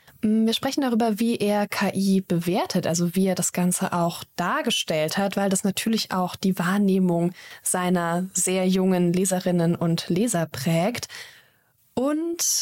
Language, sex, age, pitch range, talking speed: German, female, 20-39, 180-220 Hz, 140 wpm